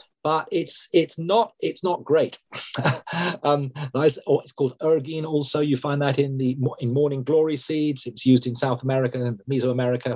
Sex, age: male, 40-59